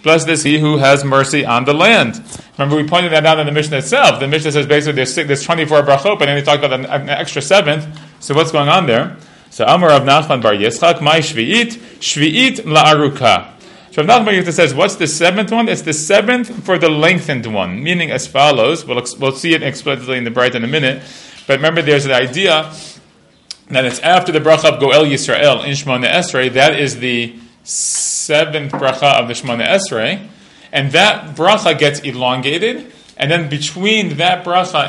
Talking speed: 190 wpm